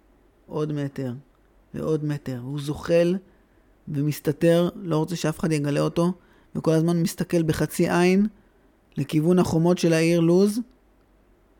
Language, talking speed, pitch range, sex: Hebrew, 120 wpm, 140-180 Hz, male